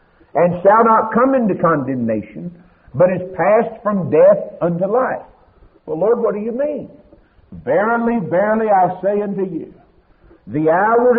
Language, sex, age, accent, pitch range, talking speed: English, male, 60-79, American, 155-235 Hz, 145 wpm